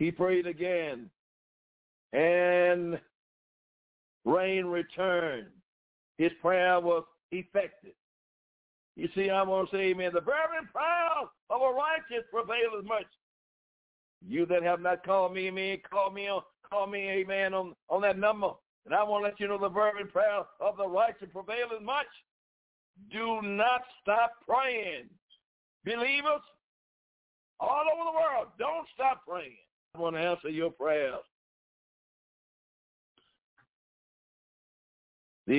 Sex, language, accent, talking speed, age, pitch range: male, English, American, 125 wpm, 60-79, 175-225 Hz